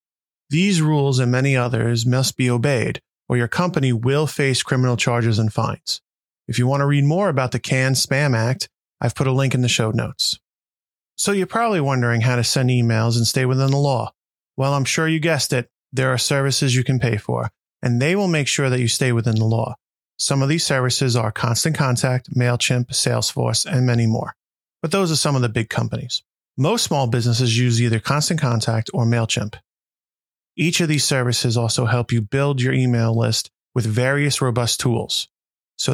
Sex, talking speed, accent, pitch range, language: male, 195 wpm, American, 115-140 Hz, English